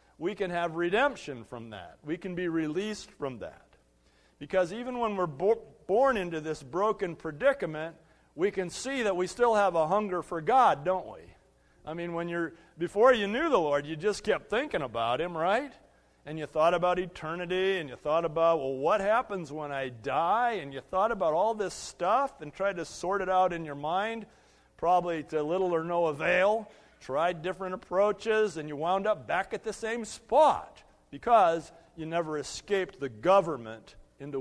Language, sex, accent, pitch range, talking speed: English, male, American, 150-200 Hz, 185 wpm